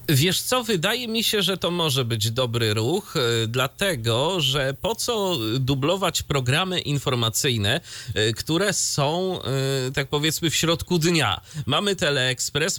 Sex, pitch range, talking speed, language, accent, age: male, 115-155 Hz, 125 wpm, Polish, native, 30-49